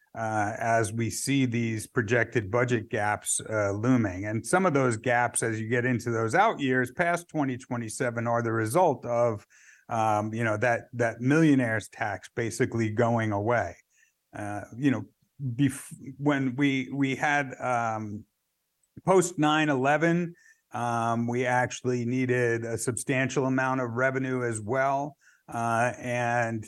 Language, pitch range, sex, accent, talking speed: English, 115-140 Hz, male, American, 140 wpm